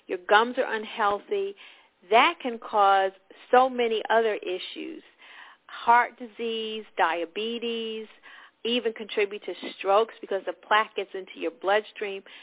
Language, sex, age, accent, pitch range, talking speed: English, female, 50-69, American, 200-255 Hz, 120 wpm